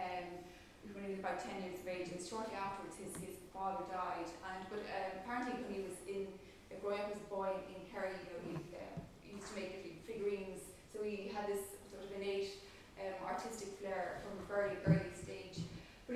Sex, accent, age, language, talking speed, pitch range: female, Irish, 20-39, English, 205 wpm, 190-205 Hz